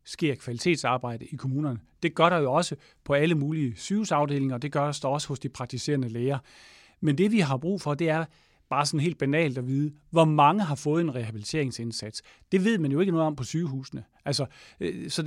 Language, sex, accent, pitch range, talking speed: English, male, Danish, 140-170 Hz, 210 wpm